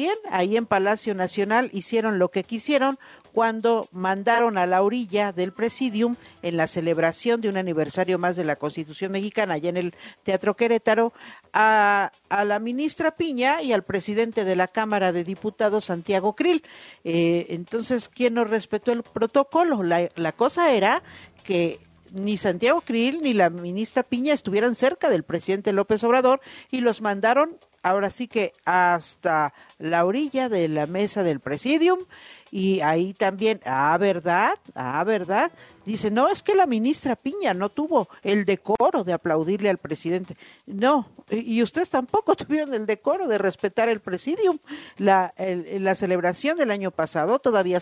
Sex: female